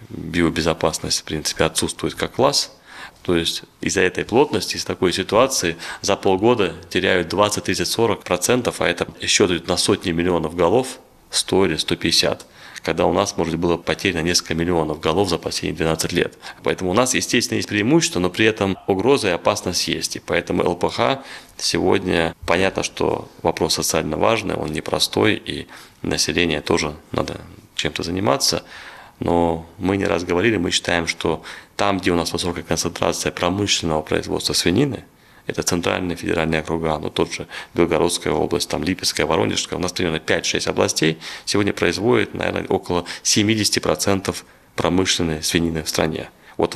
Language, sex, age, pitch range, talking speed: Russian, male, 20-39, 80-100 Hz, 150 wpm